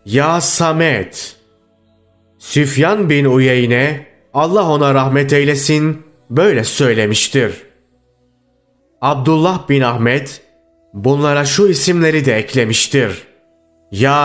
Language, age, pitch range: Turkish, 30-49, 125-150 Hz